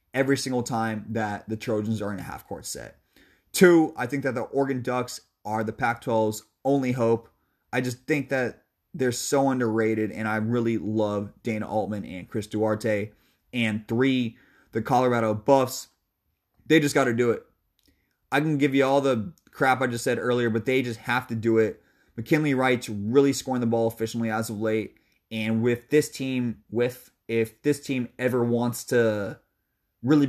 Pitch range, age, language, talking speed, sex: 115-145 Hz, 20-39, English, 180 wpm, male